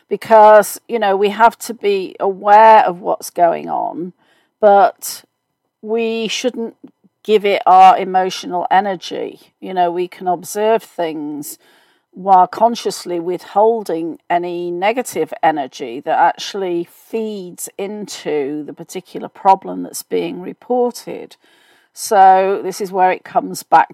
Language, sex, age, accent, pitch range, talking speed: English, female, 40-59, British, 180-235 Hz, 125 wpm